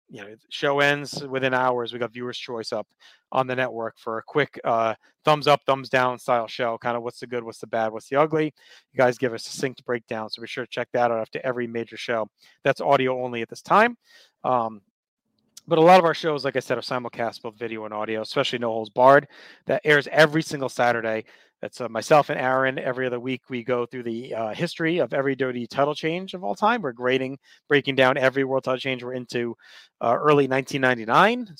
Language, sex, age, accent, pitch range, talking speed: English, male, 30-49, American, 120-150 Hz, 225 wpm